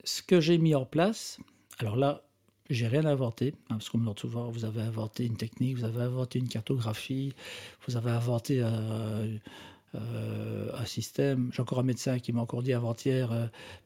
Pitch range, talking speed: 115-145 Hz, 200 wpm